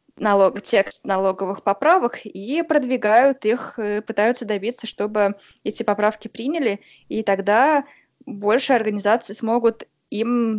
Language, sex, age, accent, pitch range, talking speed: Russian, female, 20-39, native, 200-235 Hz, 100 wpm